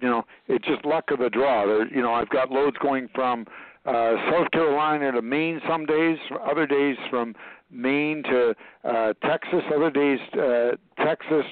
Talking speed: 170 wpm